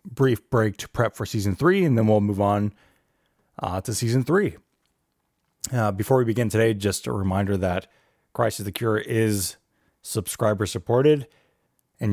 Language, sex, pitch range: English, male, 90-115 Hz